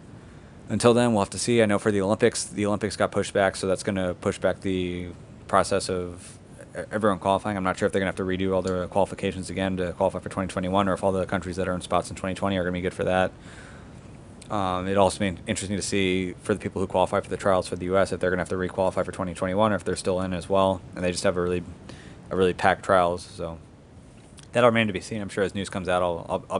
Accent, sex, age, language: American, male, 30-49, English